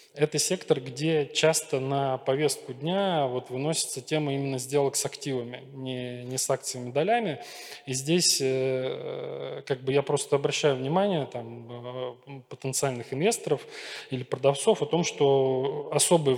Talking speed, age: 130 wpm, 20-39